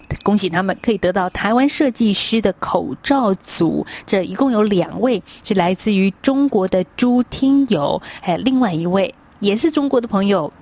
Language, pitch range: Chinese, 175-230 Hz